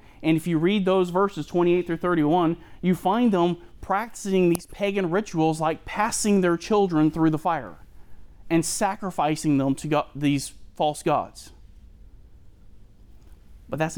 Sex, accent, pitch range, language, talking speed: male, American, 125-175 Hz, English, 135 wpm